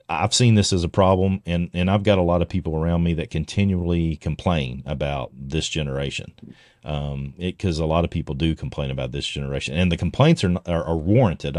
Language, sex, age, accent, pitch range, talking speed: English, male, 40-59, American, 75-95 Hz, 210 wpm